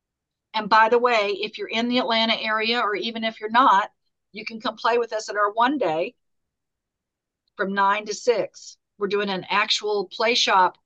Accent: American